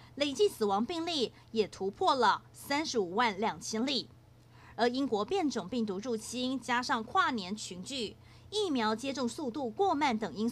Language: Chinese